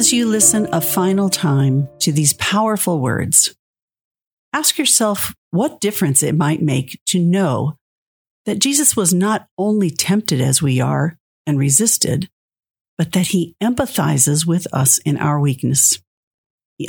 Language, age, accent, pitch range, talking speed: English, 50-69, American, 140-195 Hz, 140 wpm